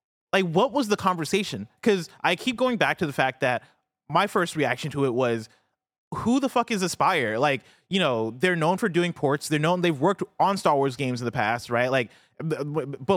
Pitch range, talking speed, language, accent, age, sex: 125-170 Hz, 215 wpm, English, American, 30-49, male